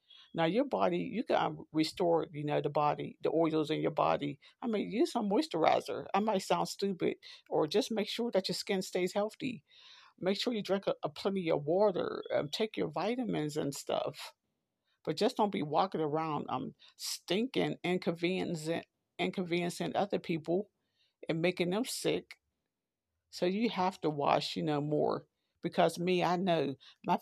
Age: 50-69